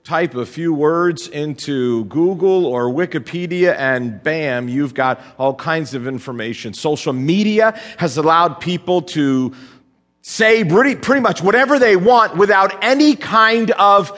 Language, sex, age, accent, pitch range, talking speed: English, male, 40-59, American, 135-195 Hz, 140 wpm